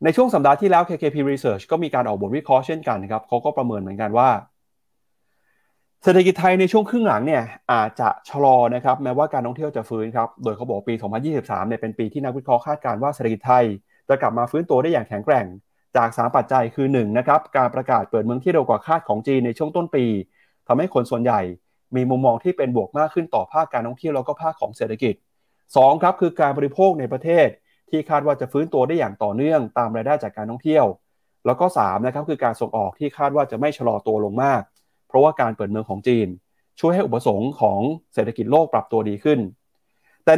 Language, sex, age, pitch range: Thai, male, 30-49, 115-150 Hz